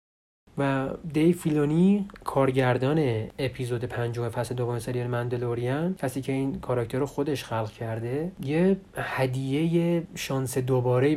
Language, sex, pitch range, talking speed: Persian, male, 115-150 Hz, 125 wpm